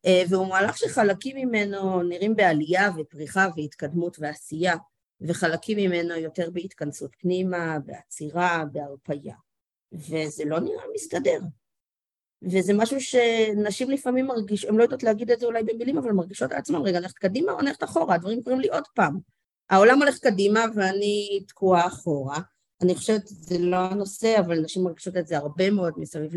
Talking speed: 150 wpm